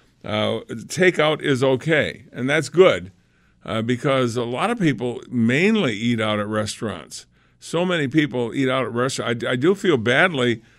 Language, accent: English, American